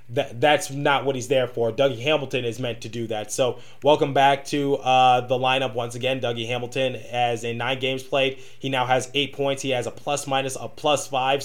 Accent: American